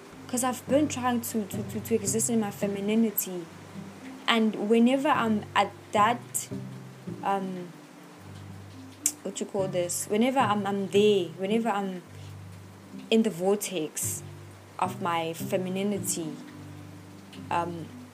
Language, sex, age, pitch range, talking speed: English, female, 20-39, 185-245 Hz, 115 wpm